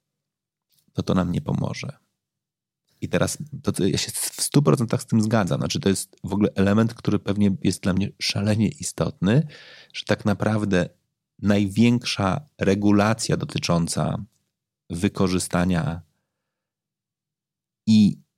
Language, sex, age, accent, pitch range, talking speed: Polish, male, 40-59, native, 95-125 Hz, 120 wpm